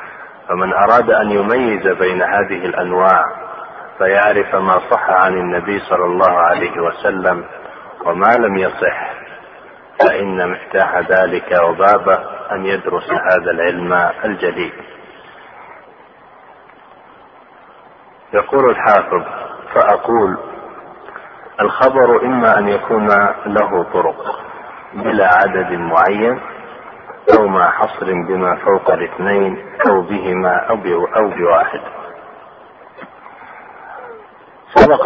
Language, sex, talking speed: Arabic, male, 90 wpm